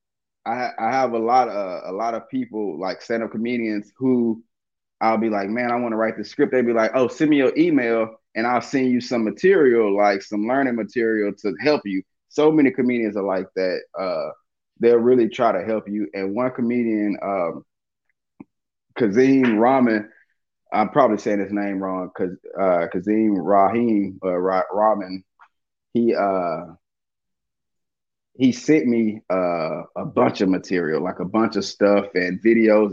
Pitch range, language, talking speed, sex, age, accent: 100-120 Hz, English, 175 wpm, male, 20-39, American